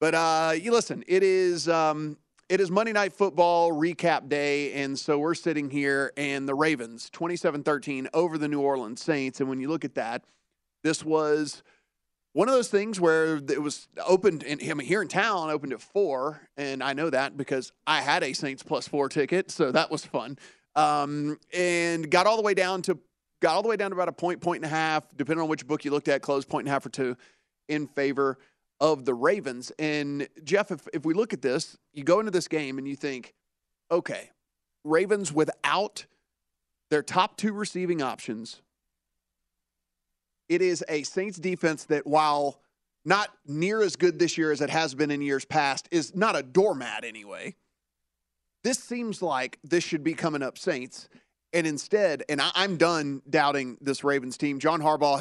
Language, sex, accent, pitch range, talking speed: English, male, American, 140-170 Hz, 195 wpm